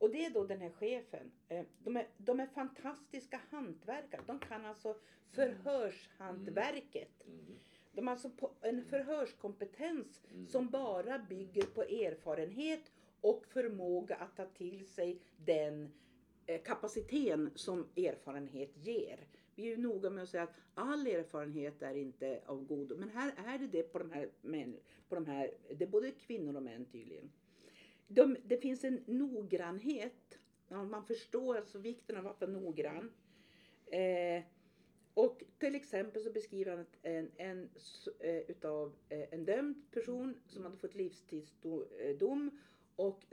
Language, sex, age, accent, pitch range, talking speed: Swedish, female, 50-69, native, 165-255 Hz, 140 wpm